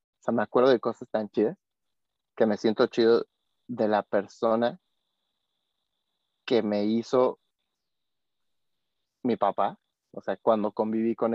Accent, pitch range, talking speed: Mexican, 105-115 Hz, 130 wpm